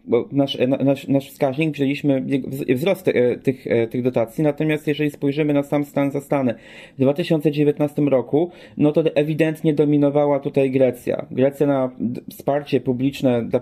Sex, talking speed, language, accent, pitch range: male, 150 wpm, Polish, native, 130-150 Hz